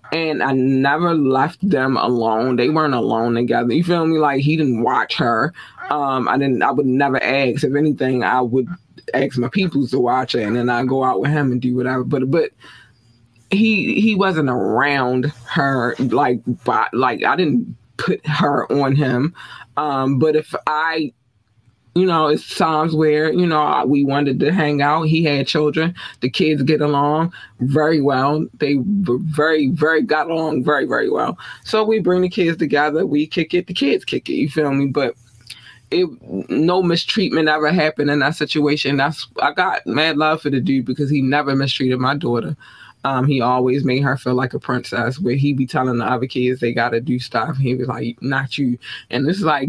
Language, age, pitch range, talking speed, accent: English, 20-39, 125-160 Hz, 195 wpm, American